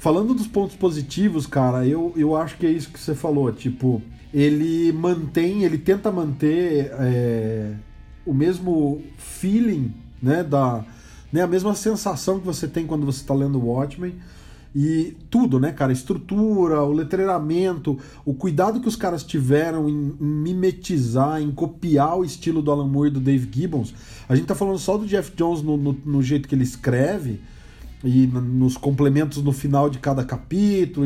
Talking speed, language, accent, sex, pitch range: 170 wpm, Portuguese, Brazilian, male, 135-180 Hz